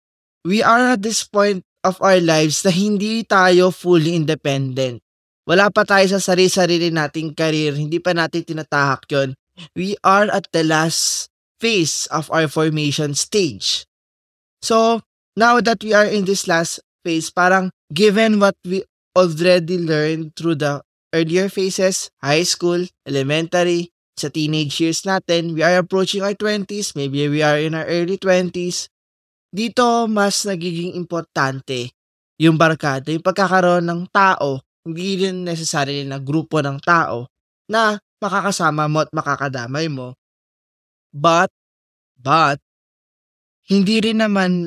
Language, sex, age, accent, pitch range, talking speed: Filipino, male, 20-39, native, 140-190 Hz, 135 wpm